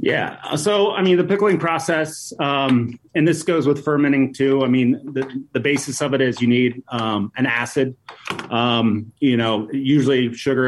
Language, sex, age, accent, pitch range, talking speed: English, male, 30-49, American, 115-135 Hz, 180 wpm